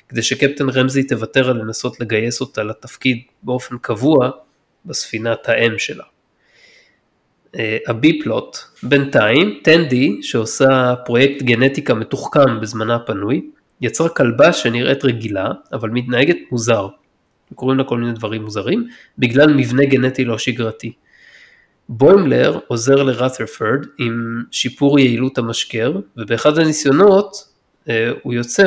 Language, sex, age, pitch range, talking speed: Hebrew, male, 20-39, 115-135 Hz, 115 wpm